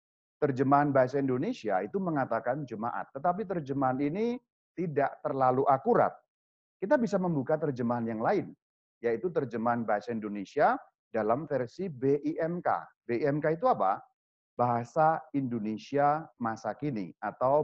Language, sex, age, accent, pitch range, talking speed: Indonesian, male, 40-59, native, 130-195 Hz, 110 wpm